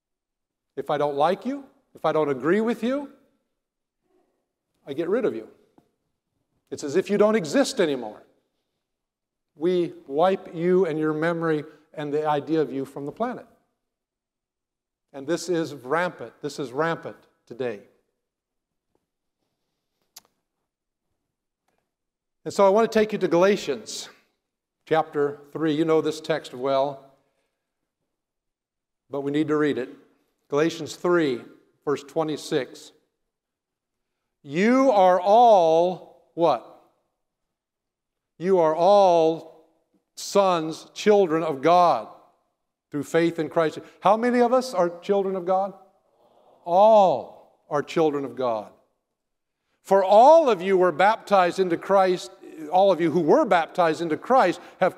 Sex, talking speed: male, 125 wpm